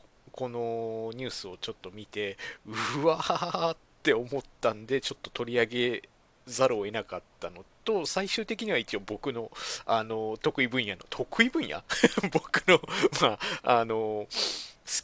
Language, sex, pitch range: Japanese, male, 105-170 Hz